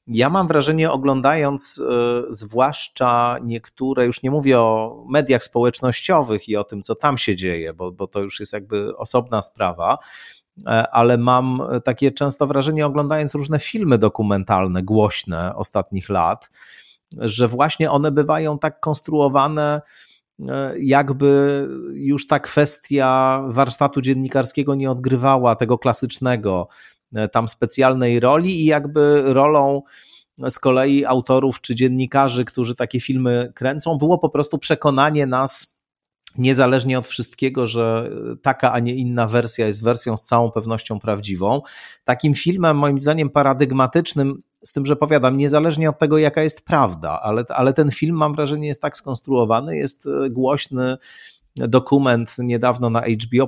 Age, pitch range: 30-49, 120-145 Hz